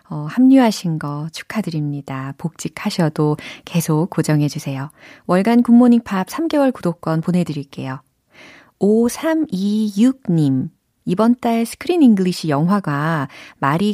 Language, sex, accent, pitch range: Korean, female, native, 155-215 Hz